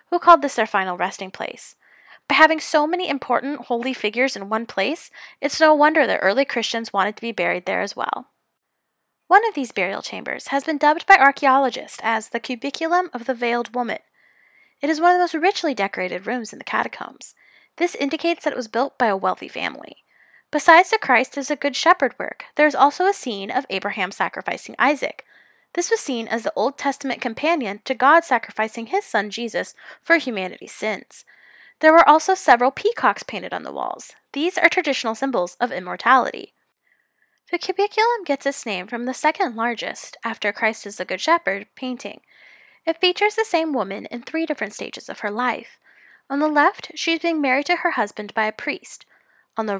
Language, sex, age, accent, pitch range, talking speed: English, female, 10-29, American, 225-320 Hz, 195 wpm